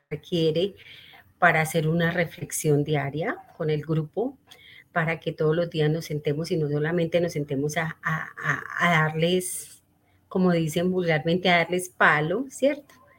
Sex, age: female, 30-49